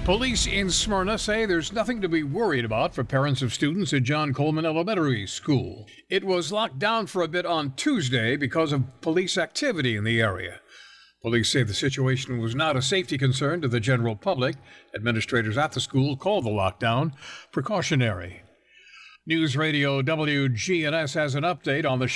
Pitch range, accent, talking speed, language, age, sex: 120-160 Hz, American, 175 wpm, English, 60-79, male